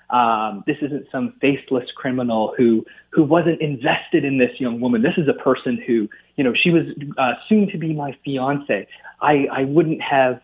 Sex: male